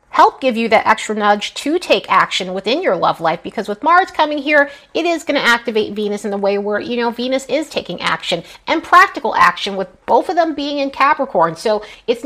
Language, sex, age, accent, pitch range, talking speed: English, female, 30-49, American, 205-285 Hz, 225 wpm